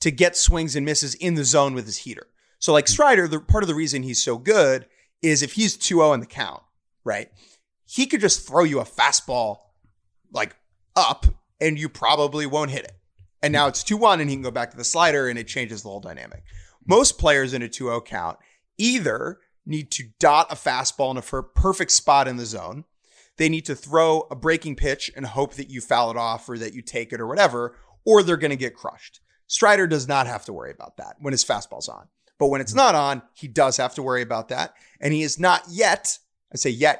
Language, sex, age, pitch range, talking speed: English, male, 30-49, 125-170 Hz, 230 wpm